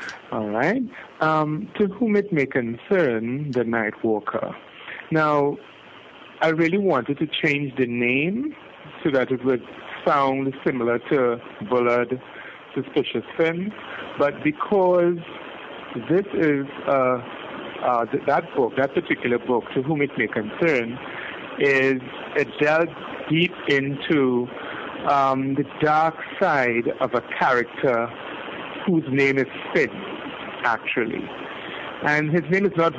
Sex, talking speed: male, 120 wpm